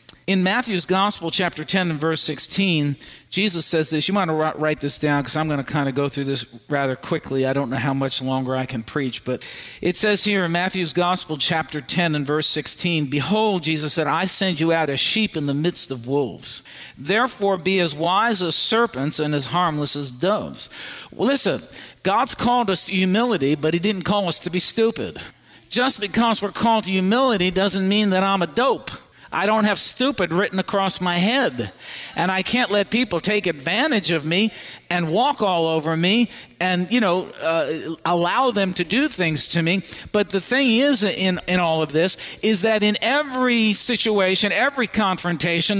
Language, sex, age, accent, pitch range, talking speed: English, male, 50-69, American, 160-215 Hz, 200 wpm